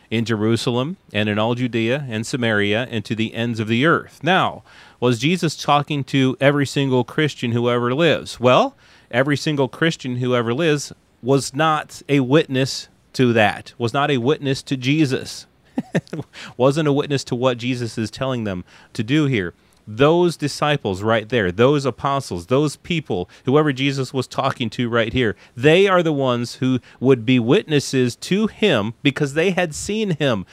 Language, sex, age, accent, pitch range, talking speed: English, male, 30-49, American, 115-145 Hz, 170 wpm